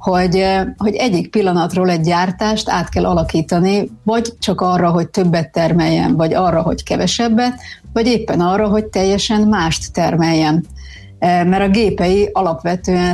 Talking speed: 135 wpm